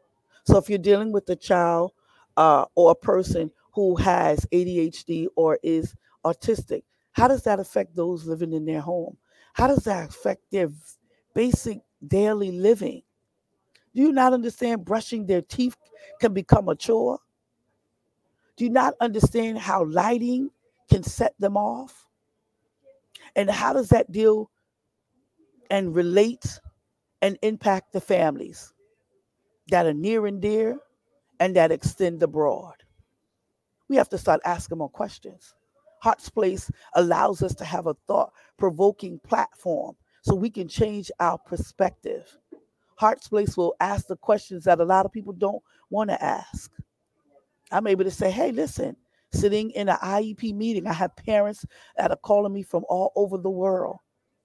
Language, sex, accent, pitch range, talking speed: English, female, American, 180-225 Hz, 150 wpm